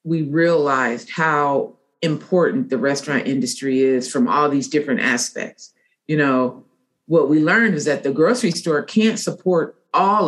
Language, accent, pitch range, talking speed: English, American, 135-165 Hz, 150 wpm